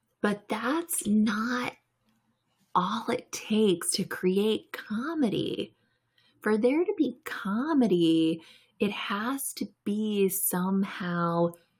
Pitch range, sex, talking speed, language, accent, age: 180-250 Hz, female, 95 wpm, English, American, 20-39